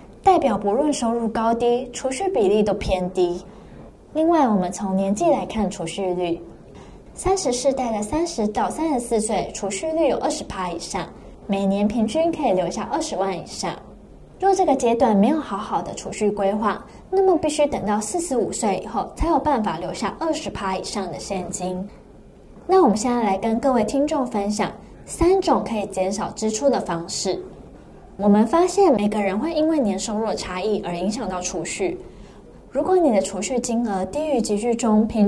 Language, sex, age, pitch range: Chinese, female, 10-29, 195-280 Hz